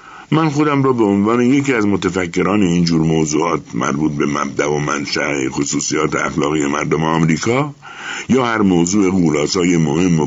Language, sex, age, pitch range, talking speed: Persian, male, 60-79, 80-125 Hz, 150 wpm